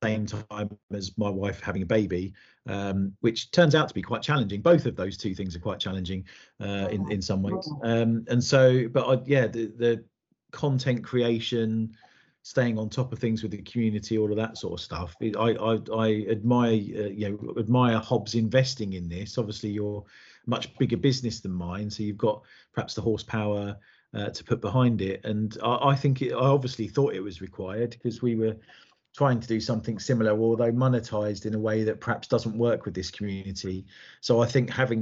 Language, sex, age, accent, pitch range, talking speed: English, male, 40-59, British, 105-120 Hz, 195 wpm